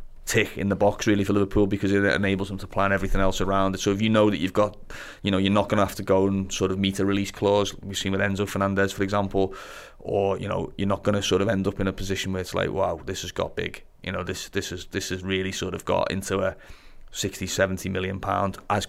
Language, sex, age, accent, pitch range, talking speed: English, male, 30-49, British, 95-100 Hz, 275 wpm